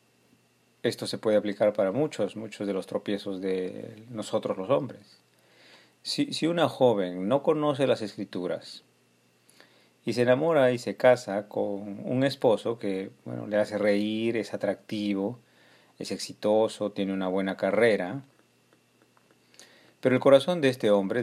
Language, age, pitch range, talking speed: Spanish, 40-59, 95-115 Hz, 140 wpm